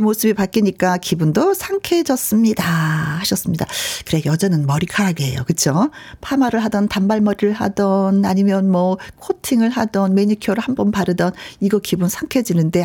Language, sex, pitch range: Korean, female, 185-280 Hz